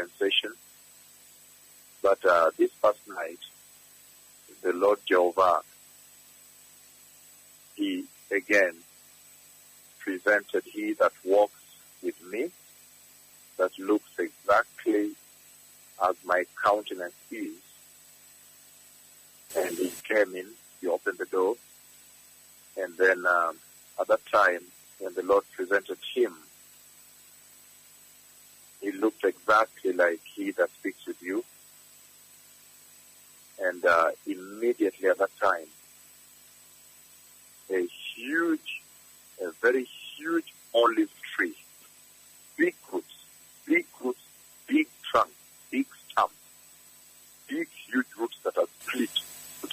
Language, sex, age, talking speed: English, male, 50-69, 95 wpm